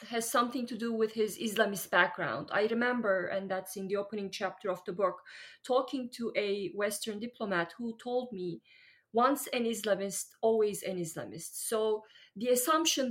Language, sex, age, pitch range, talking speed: English, female, 30-49, 195-240 Hz, 165 wpm